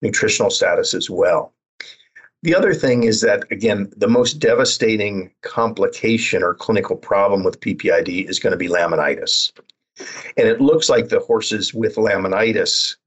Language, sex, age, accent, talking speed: English, male, 50-69, American, 145 wpm